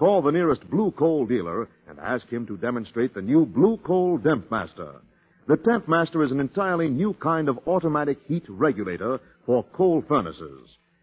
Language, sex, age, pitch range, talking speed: English, male, 50-69, 120-170 Hz, 175 wpm